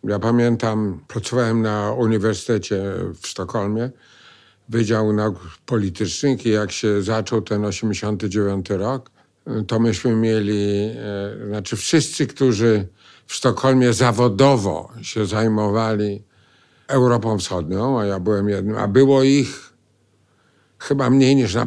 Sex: male